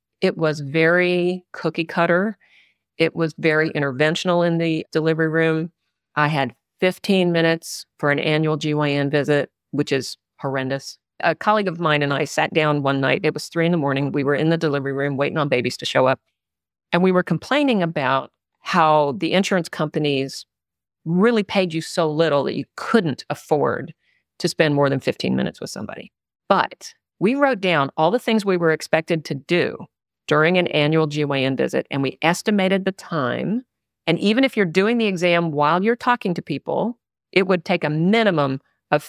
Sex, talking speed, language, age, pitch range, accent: female, 185 wpm, English, 40-59, 145-185 Hz, American